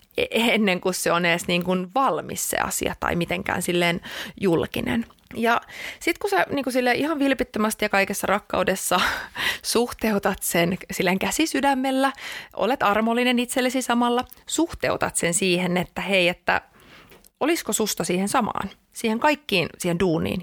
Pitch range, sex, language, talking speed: 185-270 Hz, female, Finnish, 135 wpm